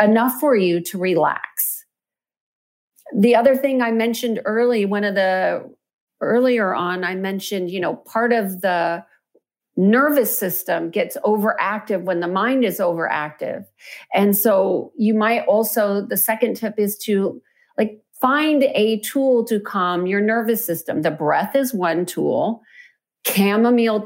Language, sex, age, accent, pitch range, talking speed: English, female, 40-59, American, 190-240 Hz, 140 wpm